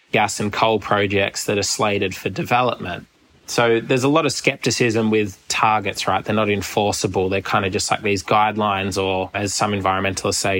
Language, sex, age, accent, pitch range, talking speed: English, male, 20-39, Australian, 100-110 Hz, 185 wpm